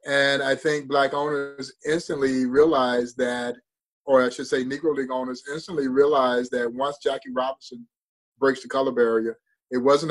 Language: English